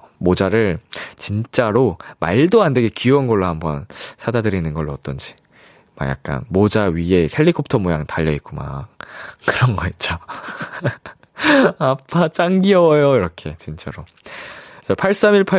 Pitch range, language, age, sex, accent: 105-160 Hz, Korean, 20-39, male, native